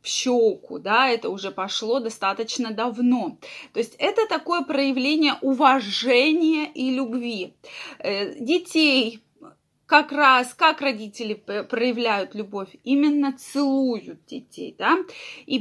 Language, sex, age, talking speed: Russian, female, 20-39, 105 wpm